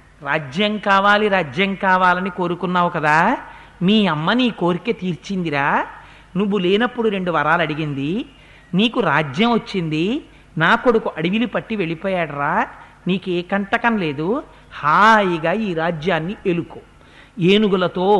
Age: 50-69